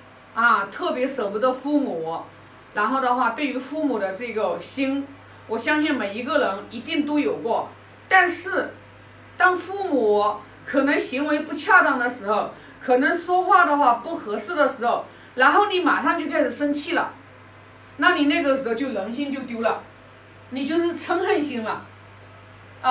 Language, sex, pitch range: Chinese, female, 240-335 Hz